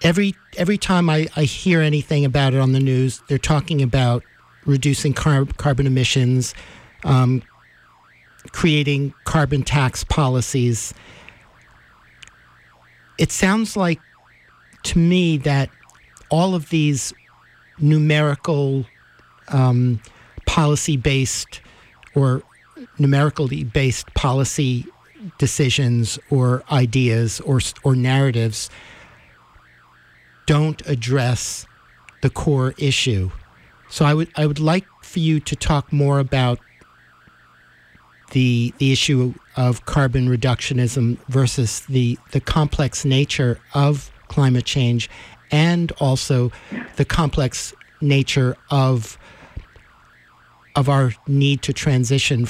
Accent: American